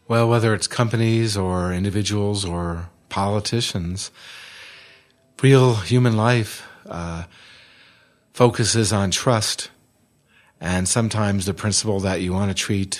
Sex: male